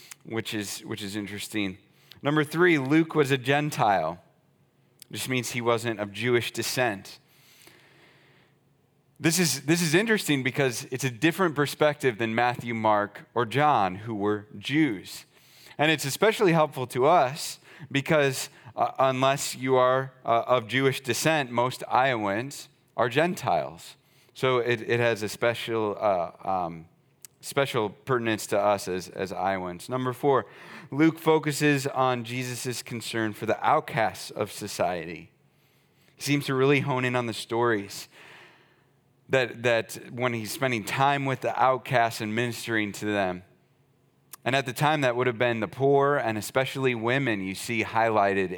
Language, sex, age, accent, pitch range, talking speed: English, male, 30-49, American, 110-140 Hz, 145 wpm